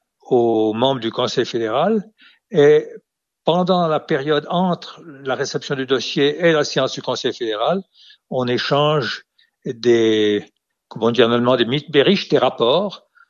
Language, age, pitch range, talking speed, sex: French, 60-79, 120-160 Hz, 130 wpm, male